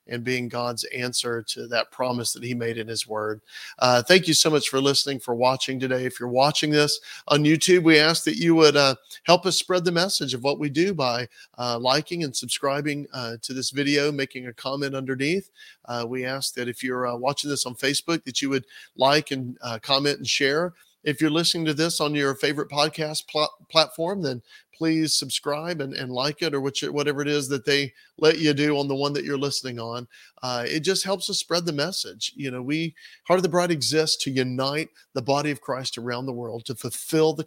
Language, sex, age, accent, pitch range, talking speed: English, male, 40-59, American, 125-150 Hz, 225 wpm